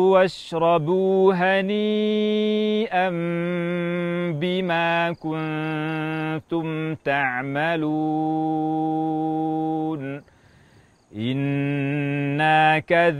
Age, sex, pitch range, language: 40-59, male, 140-180 Hz, Indonesian